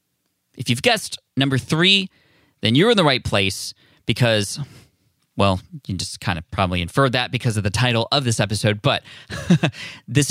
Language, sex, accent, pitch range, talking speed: English, male, American, 105-135 Hz, 170 wpm